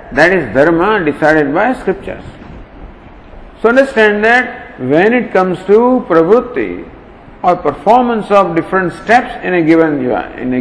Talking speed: 140 wpm